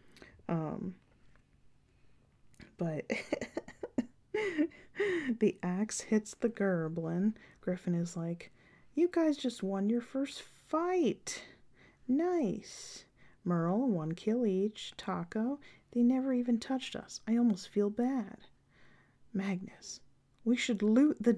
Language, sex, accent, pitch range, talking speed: English, female, American, 170-220 Hz, 105 wpm